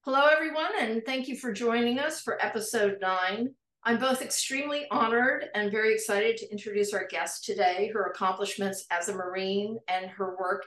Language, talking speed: English, 175 wpm